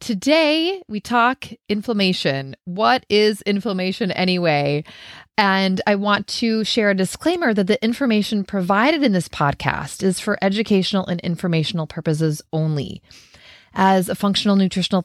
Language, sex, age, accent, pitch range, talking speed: English, female, 30-49, American, 160-210 Hz, 130 wpm